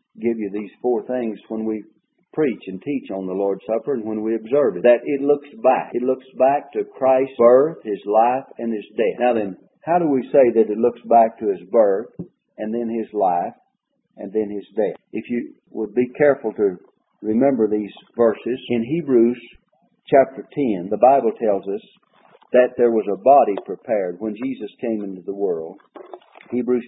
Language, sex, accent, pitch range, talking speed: English, male, American, 110-135 Hz, 190 wpm